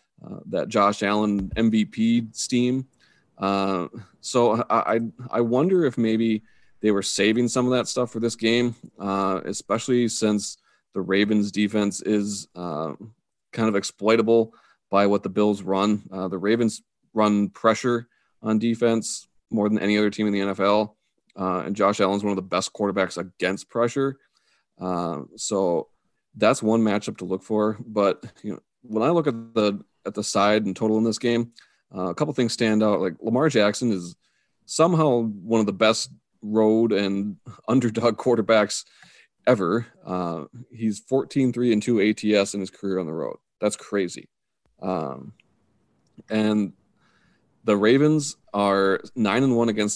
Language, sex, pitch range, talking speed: English, male, 100-115 Hz, 160 wpm